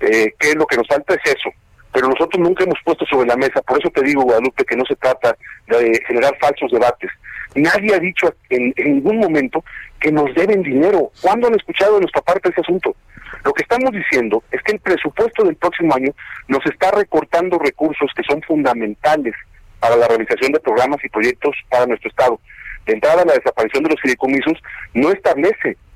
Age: 40-59